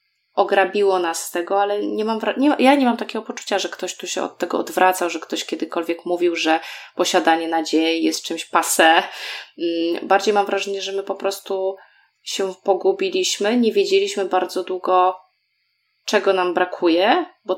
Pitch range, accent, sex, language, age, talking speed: 180-215 Hz, native, female, Polish, 20-39, 150 wpm